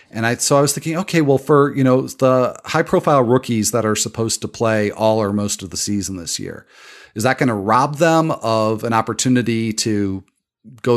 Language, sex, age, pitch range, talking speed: English, male, 40-59, 115-150 Hz, 215 wpm